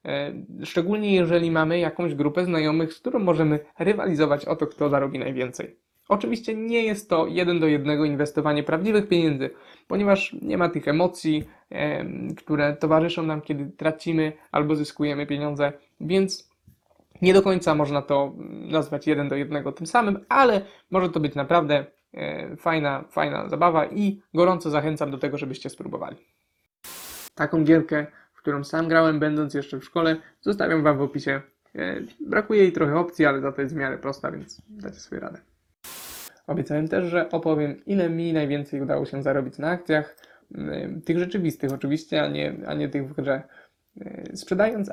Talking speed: 155 wpm